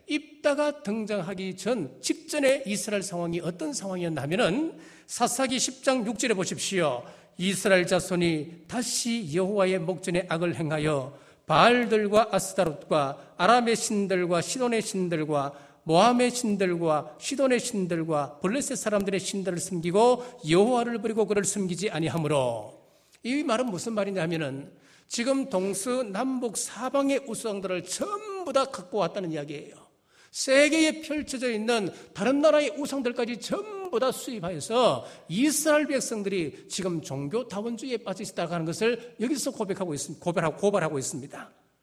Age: 50-69